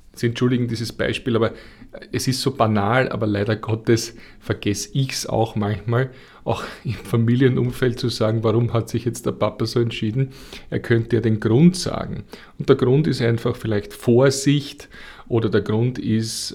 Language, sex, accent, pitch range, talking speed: German, male, Austrian, 110-125 Hz, 170 wpm